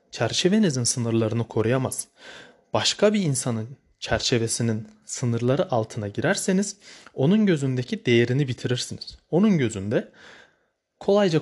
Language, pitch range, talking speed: Turkish, 120-170 Hz, 90 wpm